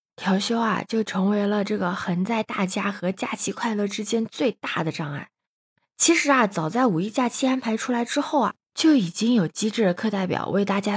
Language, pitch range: Chinese, 190-265 Hz